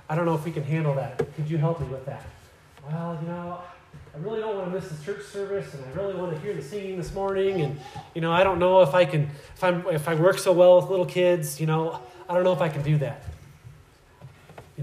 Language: English